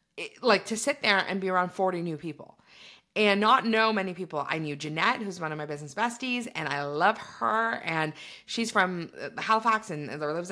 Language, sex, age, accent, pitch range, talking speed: English, female, 30-49, American, 150-200 Hz, 205 wpm